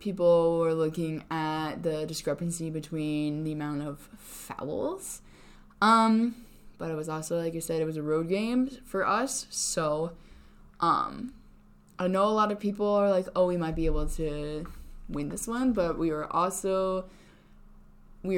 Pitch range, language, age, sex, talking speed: 150-190 Hz, English, 10-29, female, 165 wpm